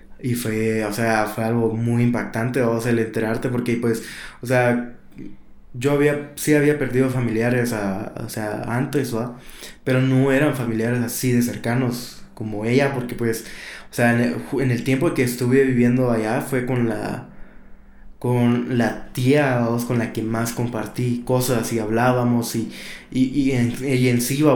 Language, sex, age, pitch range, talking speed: Spanish, male, 20-39, 115-125 Hz, 175 wpm